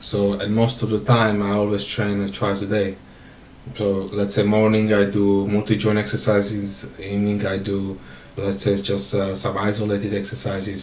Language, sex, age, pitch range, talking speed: Slovak, male, 20-39, 100-110 Hz, 170 wpm